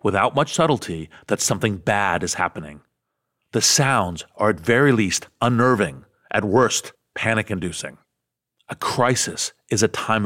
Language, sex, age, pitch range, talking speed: English, male, 40-59, 100-135 Hz, 135 wpm